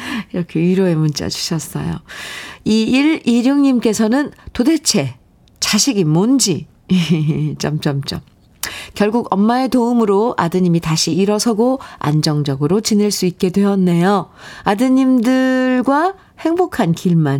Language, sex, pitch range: Korean, female, 160-230 Hz